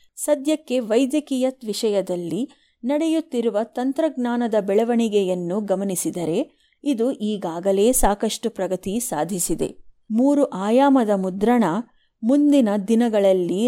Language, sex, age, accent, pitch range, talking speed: Kannada, female, 30-49, native, 200-265 Hz, 75 wpm